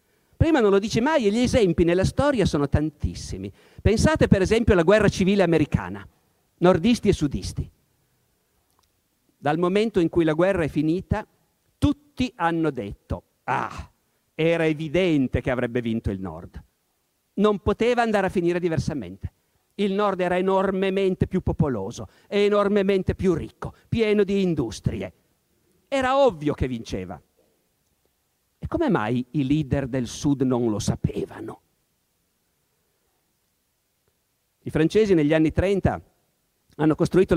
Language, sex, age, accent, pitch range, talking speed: Italian, male, 50-69, native, 135-190 Hz, 125 wpm